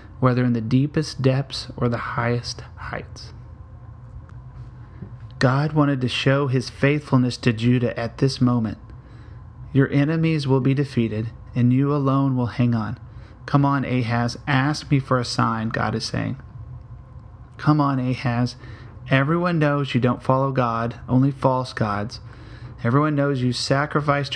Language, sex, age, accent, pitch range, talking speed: English, male, 30-49, American, 115-135 Hz, 145 wpm